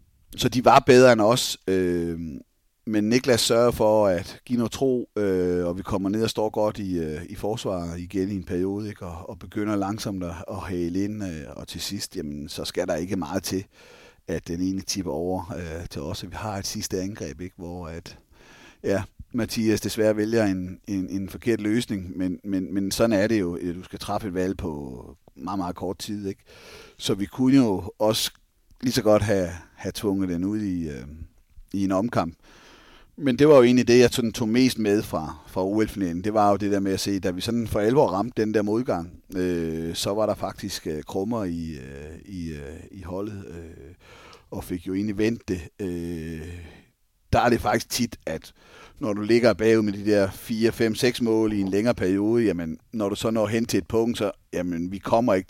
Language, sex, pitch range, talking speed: Danish, male, 90-110 Hz, 215 wpm